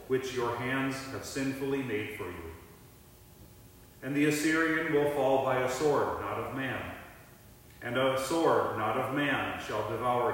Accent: American